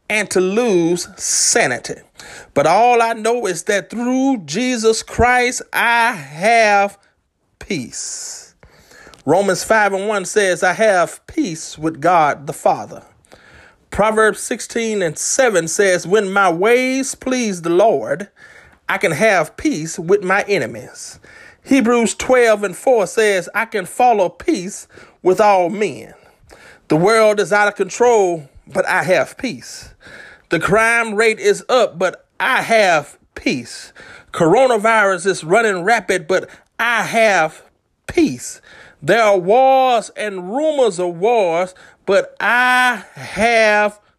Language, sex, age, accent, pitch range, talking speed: English, male, 30-49, American, 190-240 Hz, 130 wpm